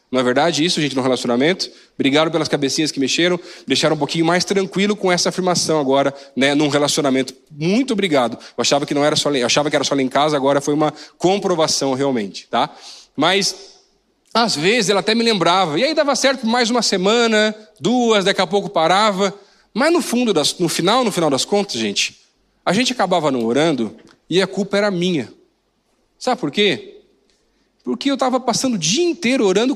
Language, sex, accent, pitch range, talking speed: Portuguese, male, Brazilian, 155-225 Hz, 200 wpm